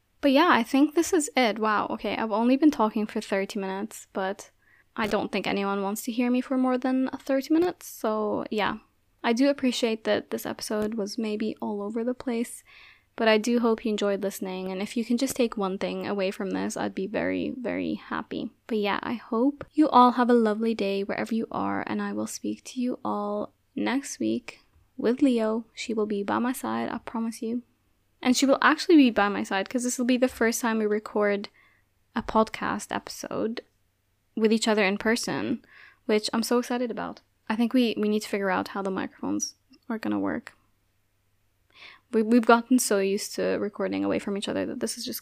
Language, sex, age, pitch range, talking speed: English, female, 10-29, 200-255 Hz, 210 wpm